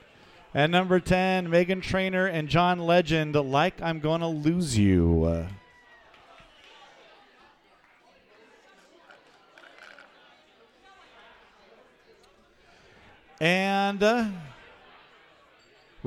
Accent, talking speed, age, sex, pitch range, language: American, 60 wpm, 40-59, male, 140-190 Hz, English